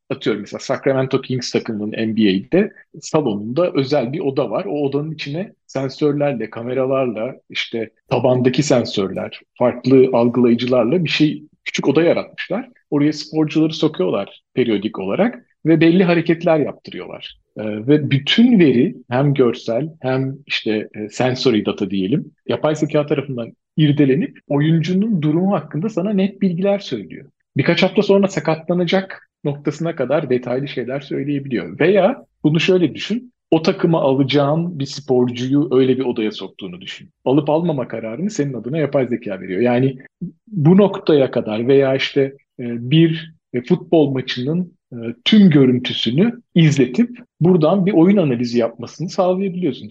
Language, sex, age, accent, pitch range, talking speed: Turkish, male, 40-59, native, 125-165 Hz, 125 wpm